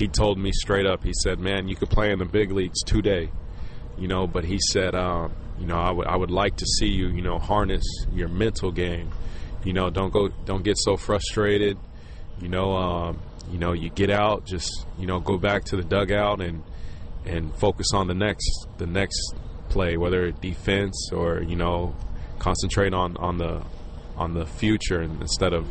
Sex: male